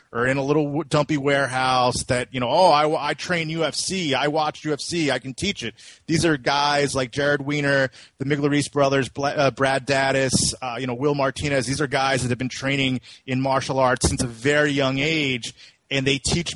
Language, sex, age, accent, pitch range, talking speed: English, male, 30-49, American, 135-155 Hz, 205 wpm